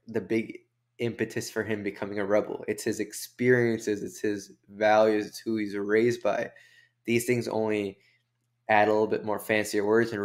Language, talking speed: English, 175 wpm